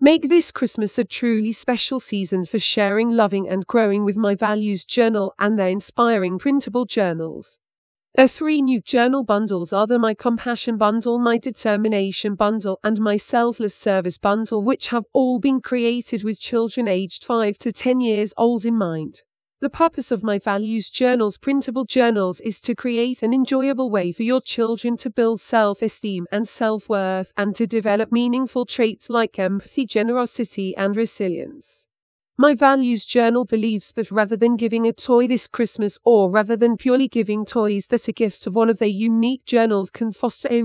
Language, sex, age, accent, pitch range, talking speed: English, female, 40-59, British, 205-245 Hz, 170 wpm